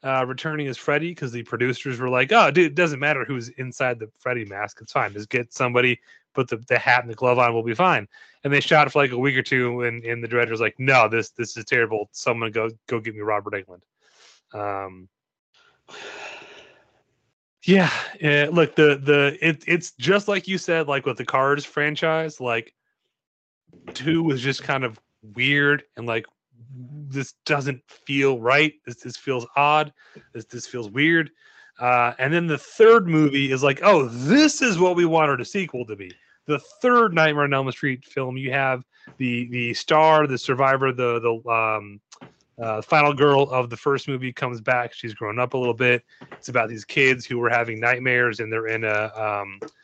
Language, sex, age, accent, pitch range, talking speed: English, male, 30-49, American, 120-150 Hz, 195 wpm